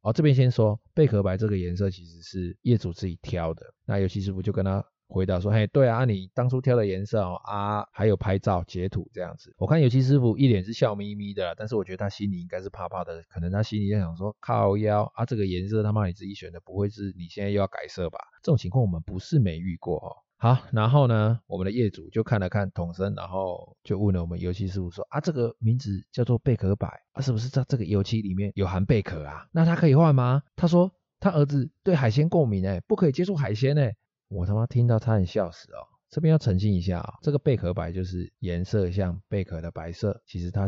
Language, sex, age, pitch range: Chinese, male, 20-39, 95-120 Hz